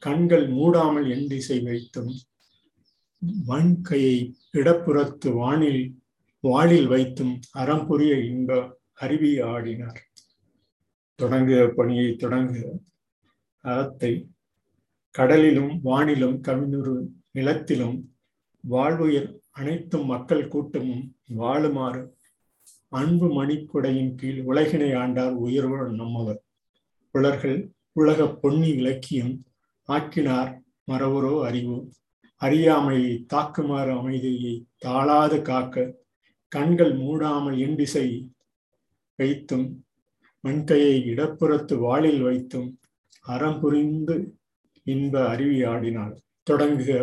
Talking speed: 70 wpm